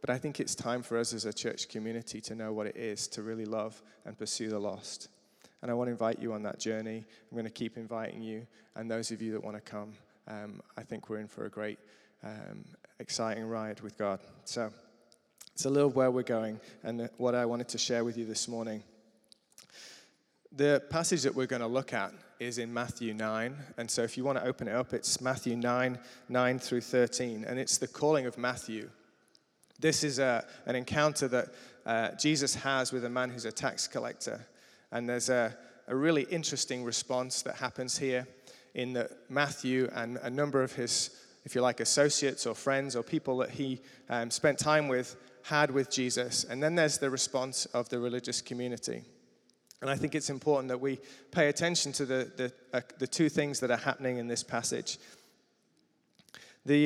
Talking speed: 205 wpm